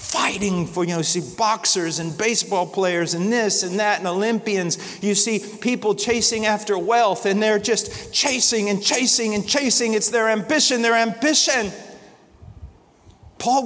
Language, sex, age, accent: English, male, 40-59, American